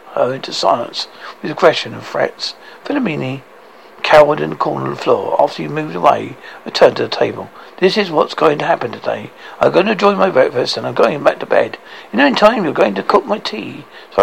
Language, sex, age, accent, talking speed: English, male, 60-79, British, 225 wpm